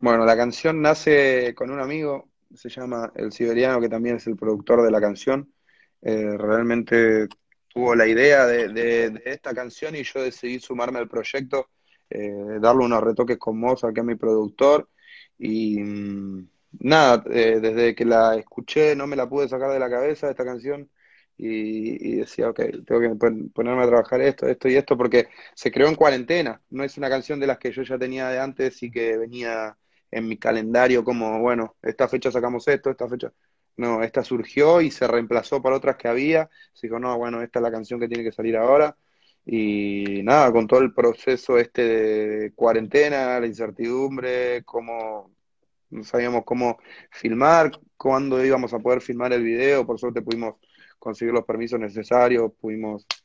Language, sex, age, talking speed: Spanish, male, 20-39, 180 wpm